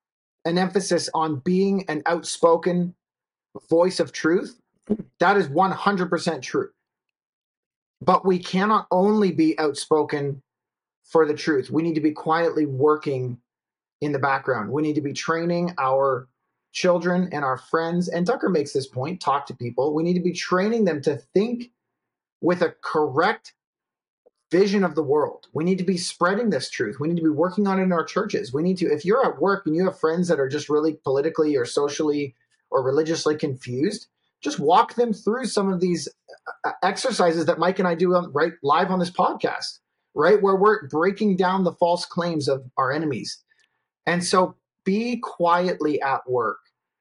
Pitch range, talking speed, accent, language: 145-185 Hz, 175 wpm, American, English